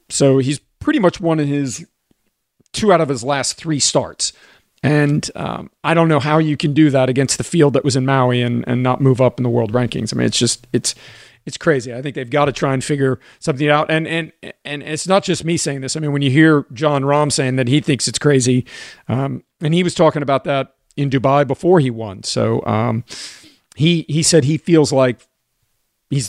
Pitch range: 130-150 Hz